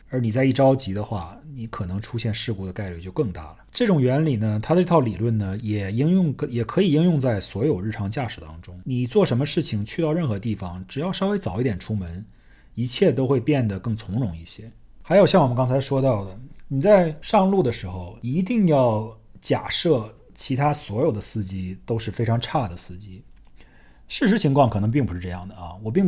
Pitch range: 105-145 Hz